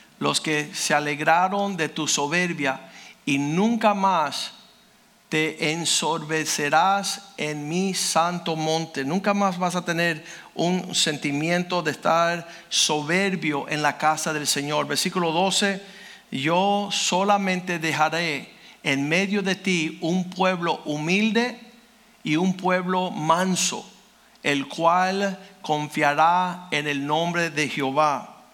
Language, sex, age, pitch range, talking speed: Spanish, male, 60-79, 155-195 Hz, 115 wpm